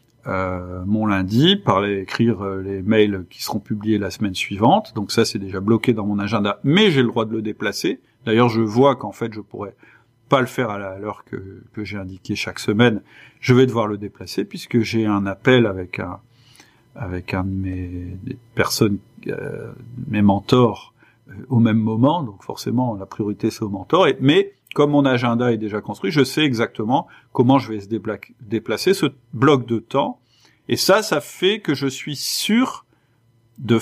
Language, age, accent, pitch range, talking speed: French, 40-59, French, 105-130 Hz, 190 wpm